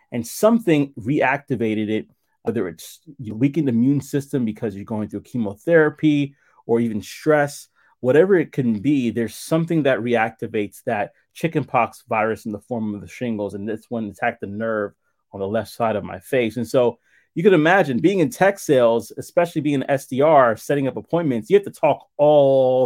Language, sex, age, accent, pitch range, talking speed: English, male, 30-49, American, 115-150 Hz, 180 wpm